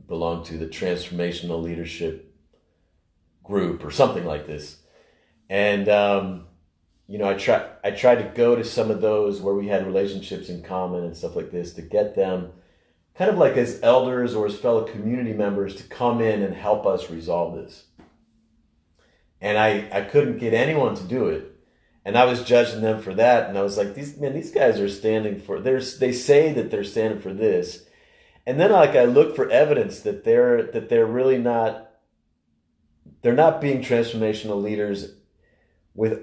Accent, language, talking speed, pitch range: American, English, 180 wpm, 80-110 Hz